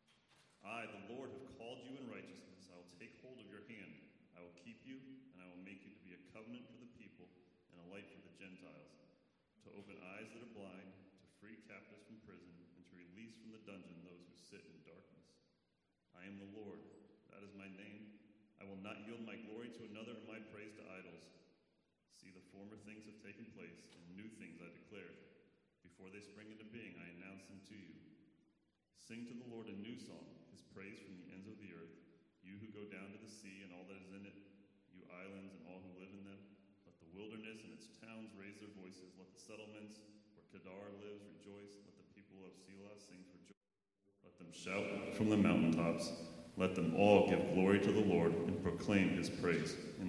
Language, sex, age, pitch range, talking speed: English, male, 30-49, 90-105 Hz, 215 wpm